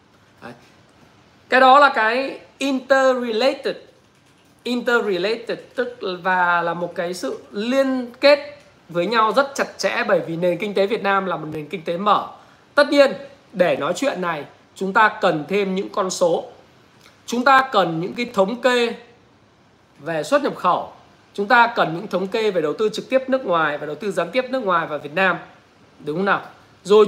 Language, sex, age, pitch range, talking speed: Vietnamese, male, 20-39, 180-255 Hz, 185 wpm